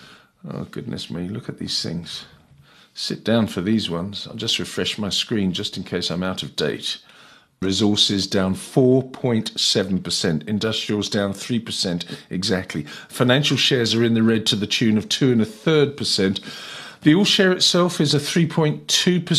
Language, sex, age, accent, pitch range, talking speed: English, male, 50-69, British, 110-145 Hz, 150 wpm